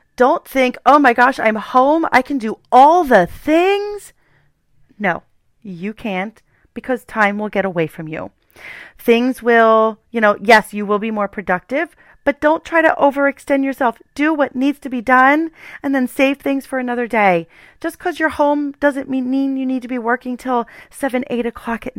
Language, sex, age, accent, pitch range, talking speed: English, female, 30-49, American, 200-265 Hz, 185 wpm